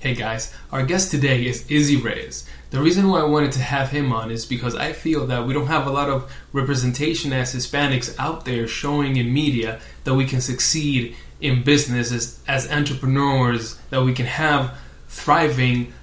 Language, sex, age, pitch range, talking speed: English, male, 20-39, 120-145 Hz, 185 wpm